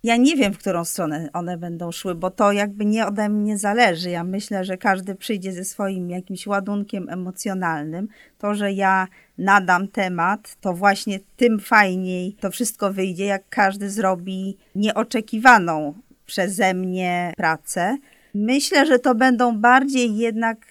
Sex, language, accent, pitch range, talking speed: female, Polish, native, 185-230 Hz, 150 wpm